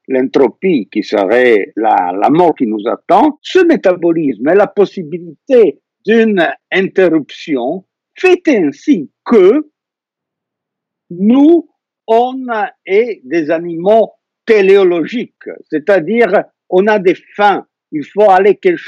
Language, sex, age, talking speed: French, male, 60-79, 110 wpm